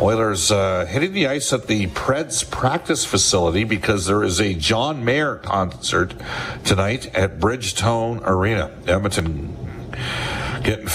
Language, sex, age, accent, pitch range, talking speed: English, male, 50-69, American, 95-115 Hz, 125 wpm